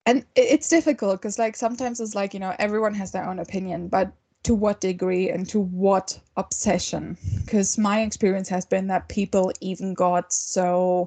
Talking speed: 180 wpm